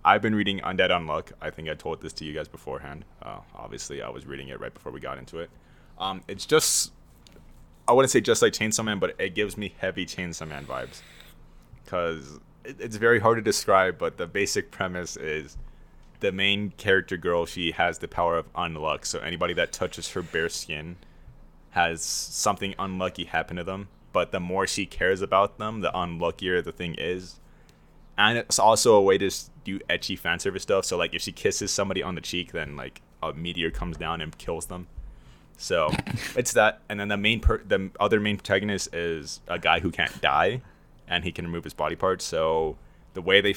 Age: 20-39